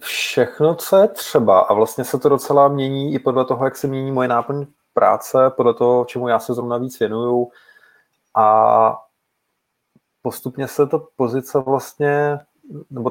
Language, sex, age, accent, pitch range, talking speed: Czech, male, 20-39, native, 120-130 Hz, 155 wpm